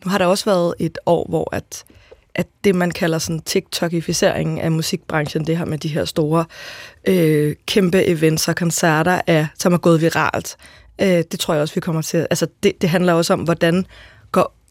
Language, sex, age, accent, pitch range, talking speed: Danish, female, 20-39, native, 170-195 Hz, 195 wpm